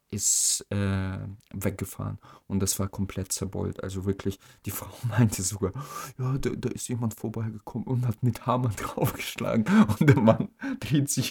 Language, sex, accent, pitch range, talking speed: German, male, German, 95-115 Hz, 160 wpm